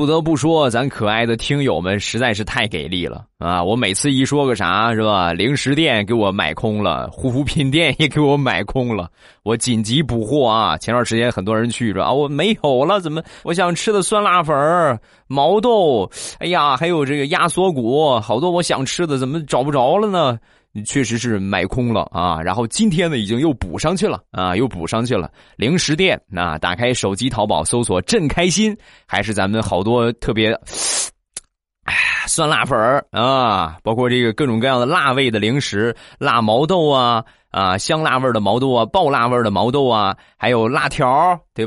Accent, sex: native, male